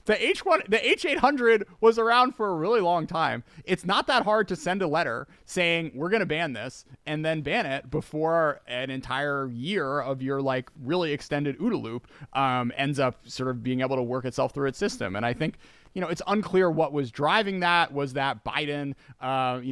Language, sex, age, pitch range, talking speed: English, male, 30-49, 130-170 Hz, 205 wpm